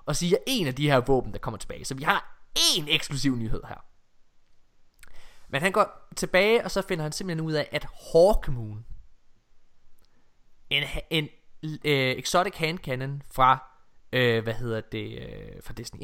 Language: Danish